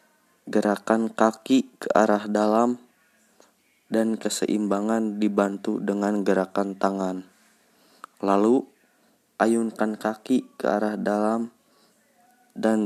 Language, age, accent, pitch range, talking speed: Indonesian, 20-39, native, 105-125 Hz, 85 wpm